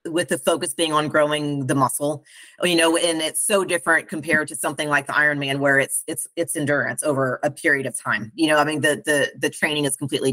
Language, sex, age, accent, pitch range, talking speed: English, female, 30-49, American, 150-230 Hz, 230 wpm